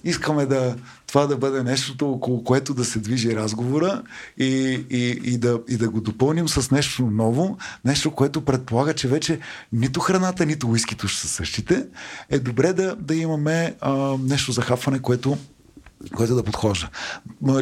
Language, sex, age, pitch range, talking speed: Bulgarian, male, 40-59, 115-150 Hz, 165 wpm